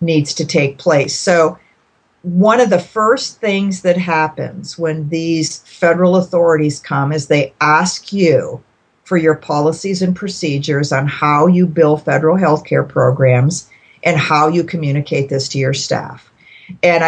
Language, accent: English, American